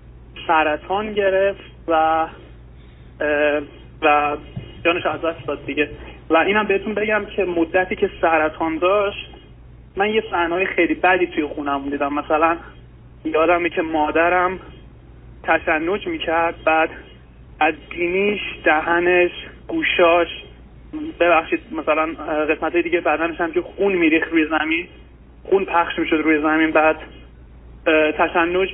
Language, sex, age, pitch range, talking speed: Persian, male, 20-39, 150-175 Hz, 115 wpm